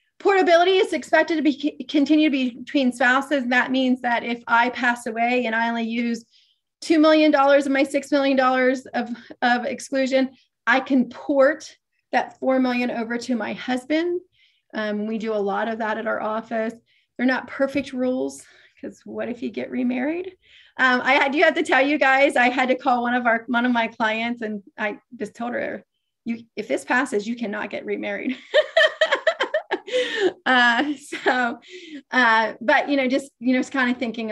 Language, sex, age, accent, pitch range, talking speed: English, female, 30-49, American, 230-285 Hz, 190 wpm